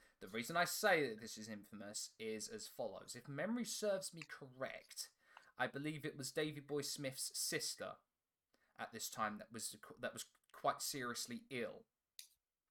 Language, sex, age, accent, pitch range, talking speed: English, male, 20-39, British, 120-165 Hz, 160 wpm